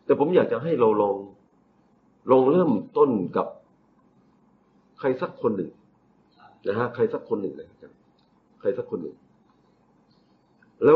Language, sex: Thai, male